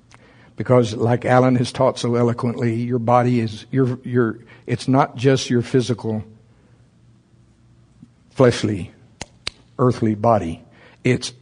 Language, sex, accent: English, male, American